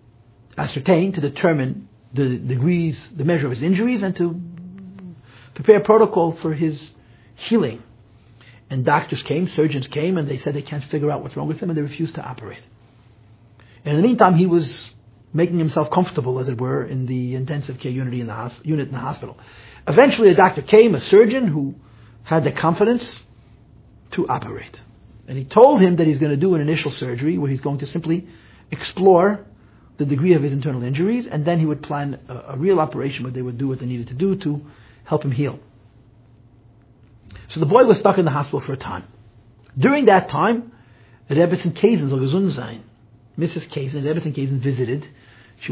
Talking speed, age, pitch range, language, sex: 185 wpm, 50-69, 120-170 Hz, English, male